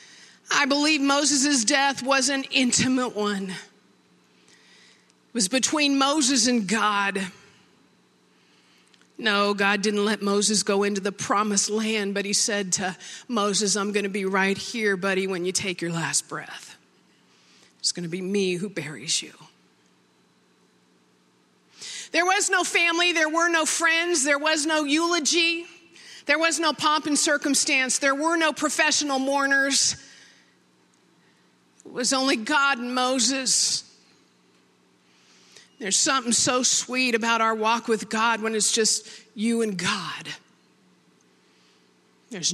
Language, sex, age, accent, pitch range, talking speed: English, female, 50-69, American, 195-275 Hz, 130 wpm